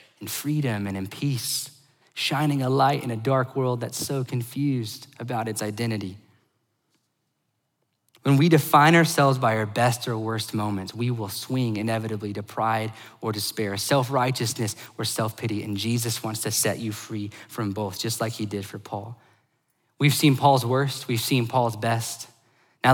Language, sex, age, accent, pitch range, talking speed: English, male, 20-39, American, 115-180 Hz, 165 wpm